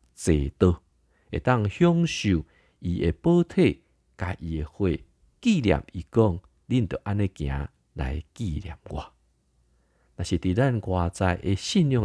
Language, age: Chinese, 50-69